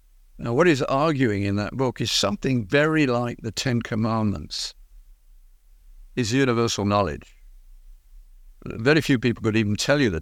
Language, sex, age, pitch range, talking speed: English, male, 60-79, 90-120 Hz, 145 wpm